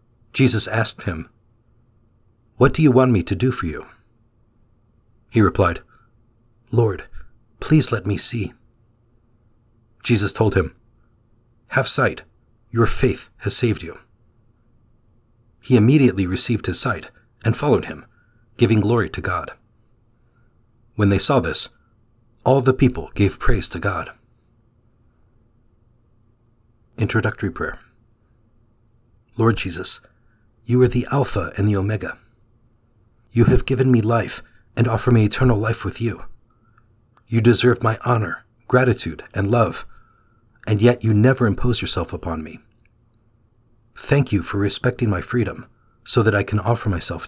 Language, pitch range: English, 110-120 Hz